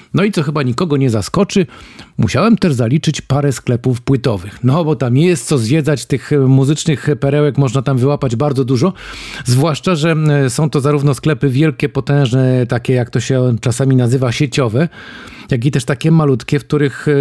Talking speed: 170 wpm